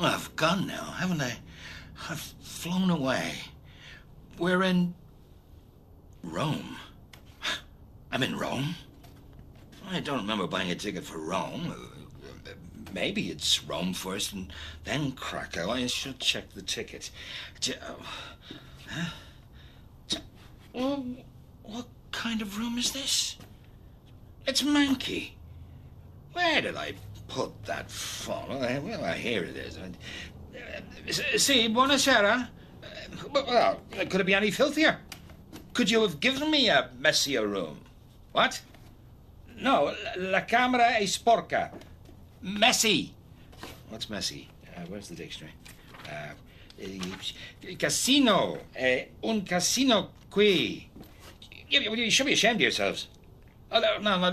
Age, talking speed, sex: 60-79, 115 wpm, male